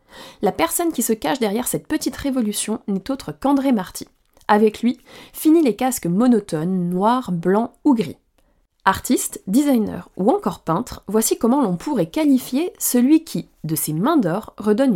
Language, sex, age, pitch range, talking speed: French, female, 20-39, 205-270 Hz, 160 wpm